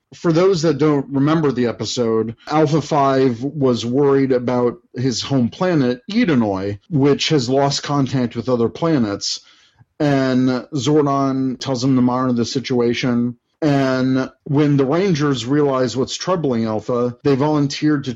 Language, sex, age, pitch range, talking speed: English, male, 40-59, 120-150 Hz, 135 wpm